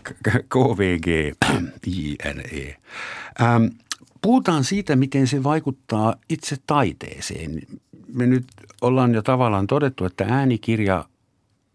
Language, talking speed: Finnish, 80 wpm